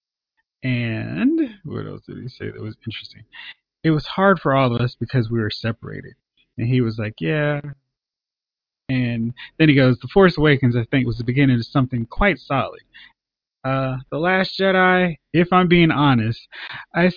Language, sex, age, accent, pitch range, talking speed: English, male, 20-39, American, 115-150 Hz, 175 wpm